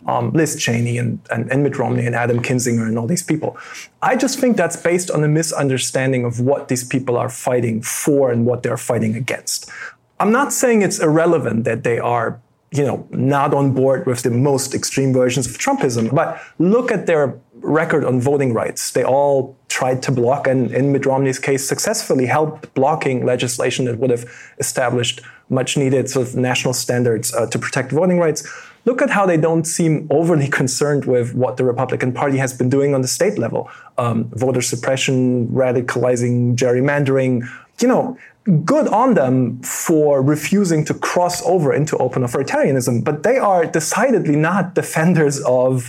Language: English